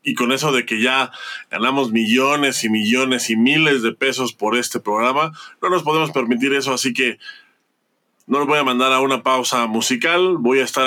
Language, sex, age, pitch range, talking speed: Spanish, male, 20-39, 120-155 Hz, 200 wpm